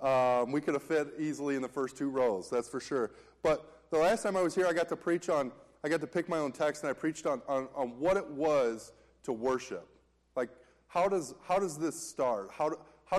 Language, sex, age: English, male, 20-39